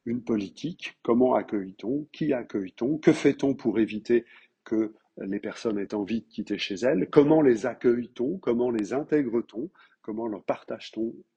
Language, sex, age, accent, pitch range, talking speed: French, male, 50-69, French, 110-135 Hz, 150 wpm